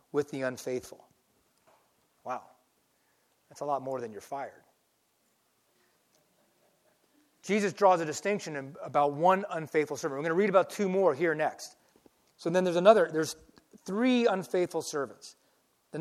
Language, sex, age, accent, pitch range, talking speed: English, male, 40-59, American, 145-195 Hz, 140 wpm